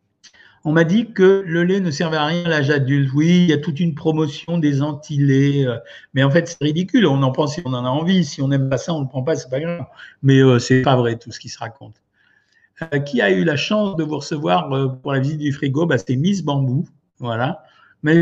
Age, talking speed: 60-79, 265 wpm